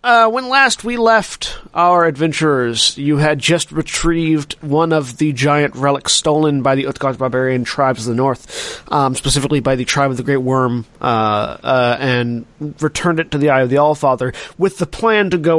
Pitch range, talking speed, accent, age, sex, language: 125-150 Hz, 190 wpm, American, 30-49, male, English